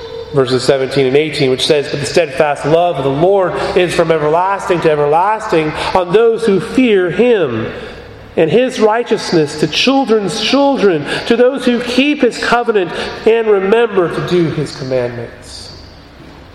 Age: 30-49